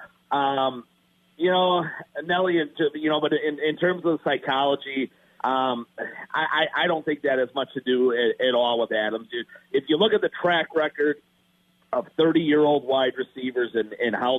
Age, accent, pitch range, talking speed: 40-59, American, 125-155 Hz, 185 wpm